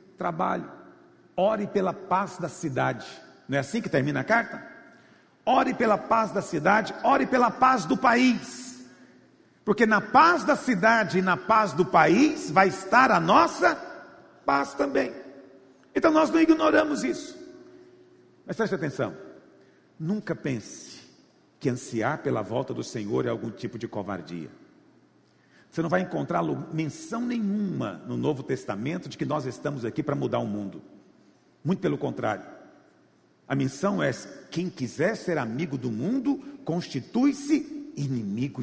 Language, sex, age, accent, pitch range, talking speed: Portuguese, male, 50-69, Brazilian, 175-280 Hz, 145 wpm